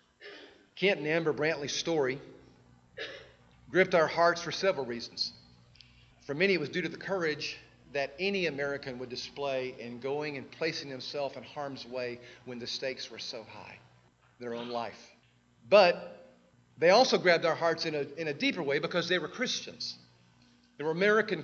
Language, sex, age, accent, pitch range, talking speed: English, male, 40-59, American, 125-170 Hz, 165 wpm